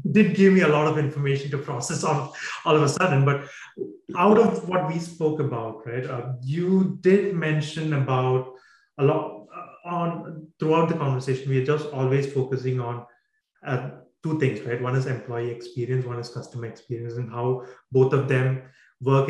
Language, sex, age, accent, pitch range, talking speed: English, male, 30-49, Indian, 130-165 Hz, 175 wpm